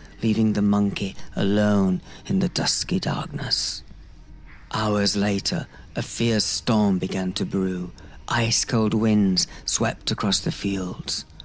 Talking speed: 115 wpm